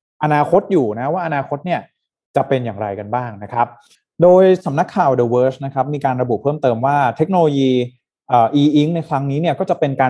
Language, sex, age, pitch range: Thai, male, 20-39, 125-155 Hz